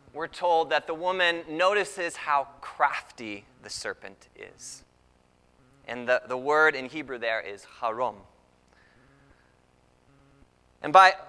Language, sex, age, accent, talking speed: English, male, 20-39, American, 115 wpm